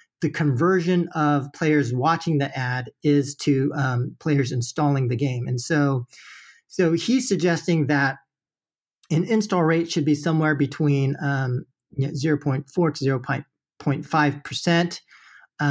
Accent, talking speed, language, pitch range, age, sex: American, 120 wpm, English, 140-165 Hz, 40-59, male